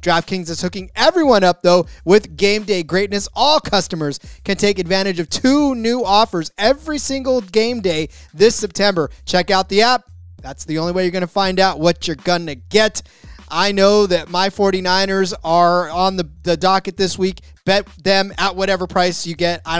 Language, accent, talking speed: English, American, 190 wpm